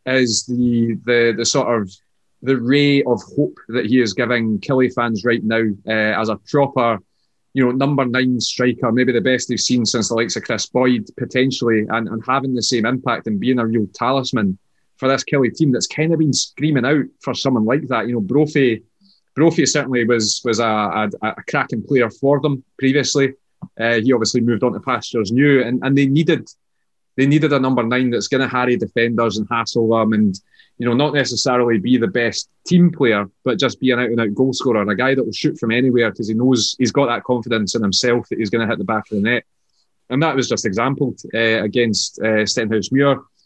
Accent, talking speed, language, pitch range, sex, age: British, 215 wpm, English, 115-135 Hz, male, 30-49